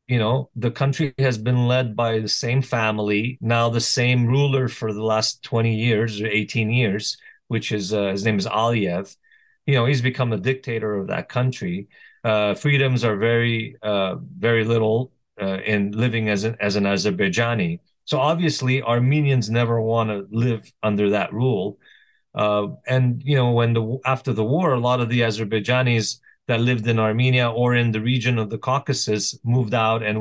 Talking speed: 185 wpm